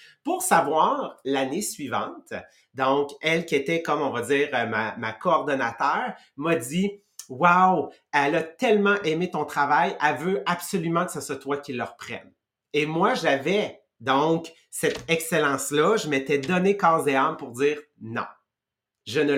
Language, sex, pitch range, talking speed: English, male, 140-180 Hz, 160 wpm